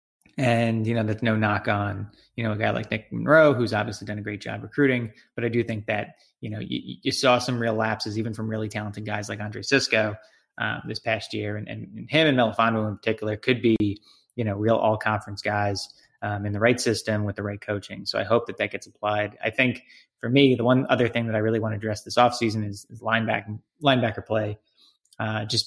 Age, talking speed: 20-39, 235 wpm